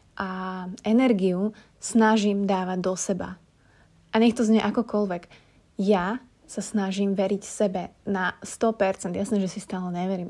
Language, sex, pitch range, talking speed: Slovak, female, 190-225 Hz, 135 wpm